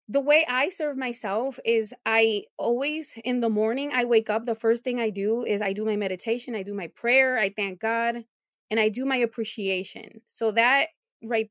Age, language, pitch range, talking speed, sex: 20-39, English, 200-250 Hz, 205 wpm, female